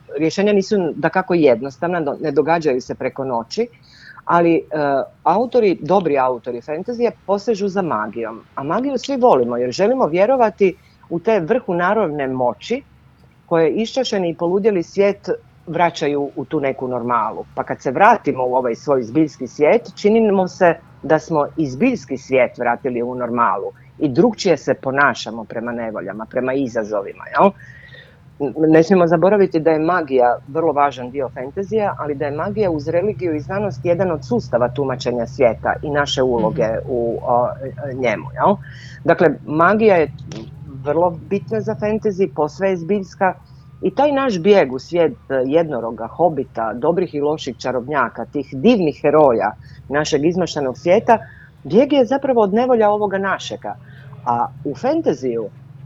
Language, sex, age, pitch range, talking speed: Croatian, female, 40-59, 130-195 Hz, 145 wpm